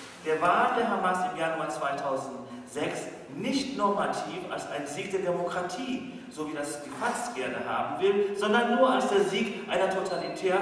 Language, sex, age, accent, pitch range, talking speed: English, male, 40-59, German, 175-215 Hz, 165 wpm